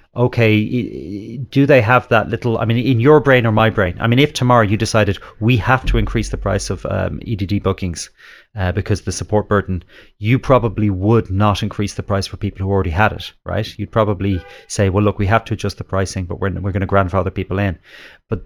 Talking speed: 220 wpm